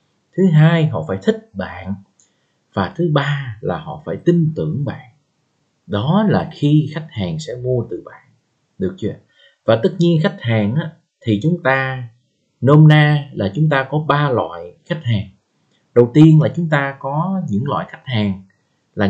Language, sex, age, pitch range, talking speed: Vietnamese, male, 20-39, 115-160 Hz, 175 wpm